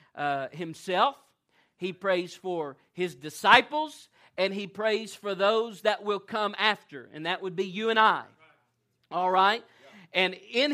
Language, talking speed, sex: English, 150 wpm, male